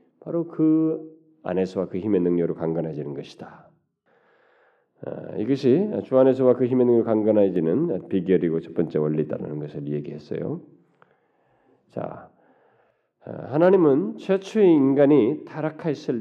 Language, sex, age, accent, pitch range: Korean, male, 40-59, native, 95-140 Hz